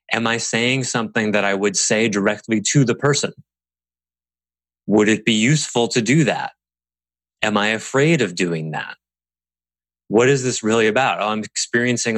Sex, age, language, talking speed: male, 20-39, English, 160 wpm